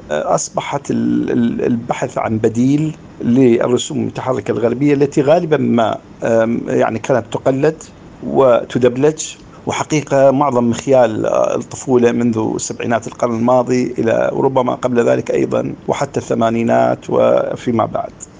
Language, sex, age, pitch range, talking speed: Arabic, male, 50-69, 115-150 Hz, 100 wpm